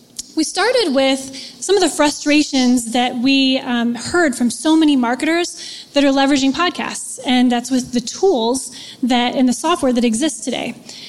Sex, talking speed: female, 170 wpm